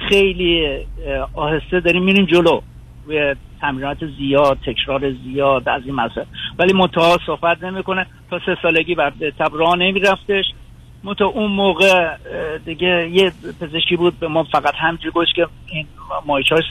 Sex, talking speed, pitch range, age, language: male, 135 wpm, 150-180 Hz, 50-69, Persian